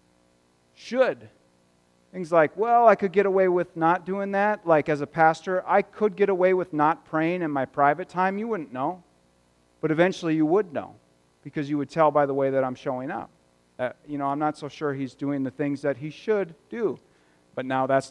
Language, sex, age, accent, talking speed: English, male, 40-59, American, 210 wpm